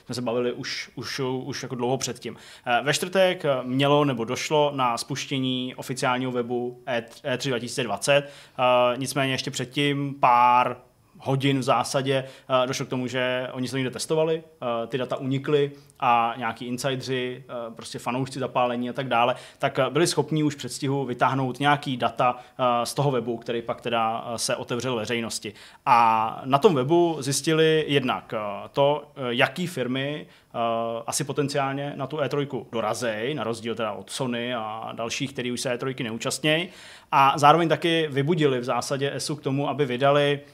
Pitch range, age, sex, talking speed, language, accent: 120-140 Hz, 20-39, male, 150 wpm, Czech, native